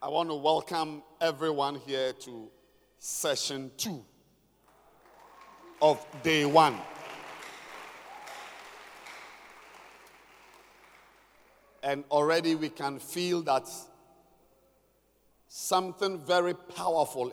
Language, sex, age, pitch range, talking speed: English, male, 50-69, 135-175 Hz, 75 wpm